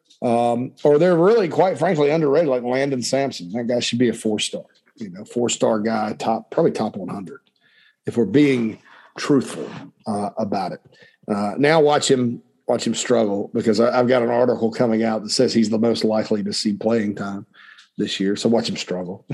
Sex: male